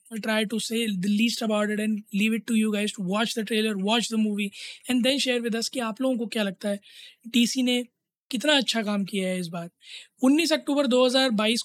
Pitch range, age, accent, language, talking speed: 215-255 Hz, 20-39, native, Hindi, 225 wpm